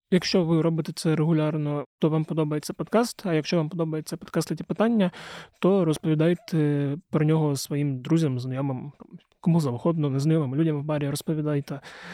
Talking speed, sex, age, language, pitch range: 145 wpm, male, 20-39, Ukrainian, 150-170 Hz